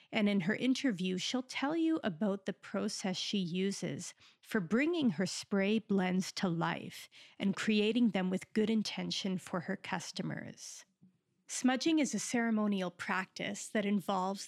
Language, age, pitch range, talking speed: English, 40-59, 190-230 Hz, 145 wpm